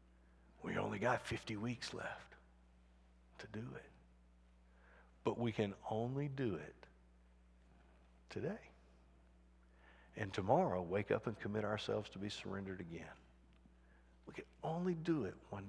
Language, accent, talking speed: English, American, 125 wpm